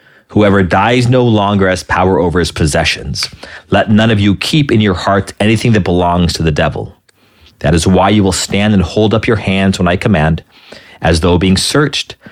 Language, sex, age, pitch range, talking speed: English, male, 40-59, 90-110 Hz, 200 wpm